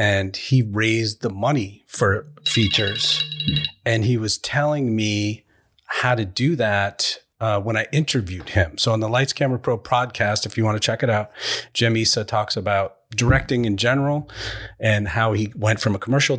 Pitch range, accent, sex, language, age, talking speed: 100-125 Hz, American, male, English, 30-49, 180 wpm